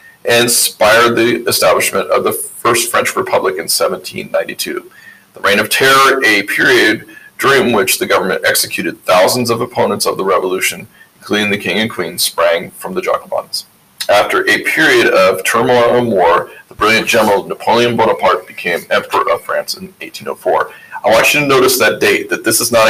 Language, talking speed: English, 175 wpm